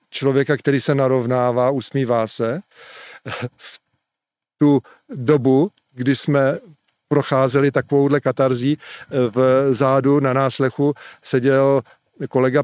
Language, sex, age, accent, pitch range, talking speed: Czech, male, 40-59, native, 130-150 Hz, 95 wpm